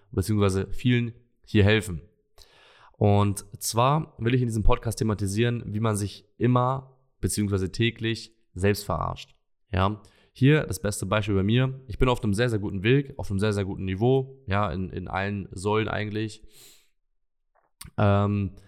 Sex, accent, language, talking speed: male, German, German, 155 wpm